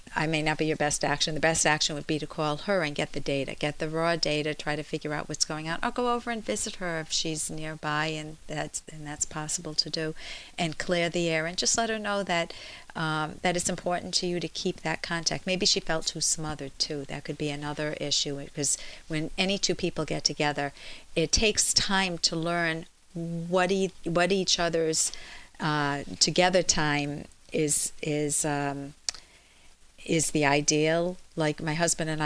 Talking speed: 195 wpm